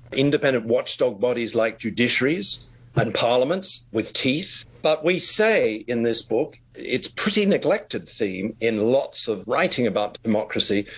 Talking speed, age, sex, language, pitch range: 135 wpm, 50-69, male, English, 115-160 Hz